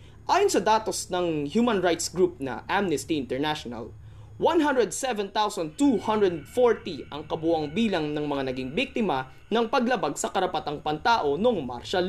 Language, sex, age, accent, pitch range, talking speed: Filipino, male, 20-39, native, 135-230 Hz, 125 wpm